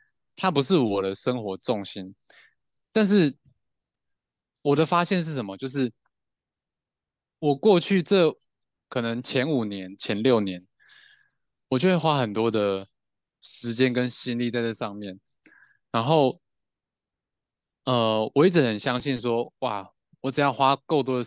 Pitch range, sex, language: 105-140 Hz, male, Chinese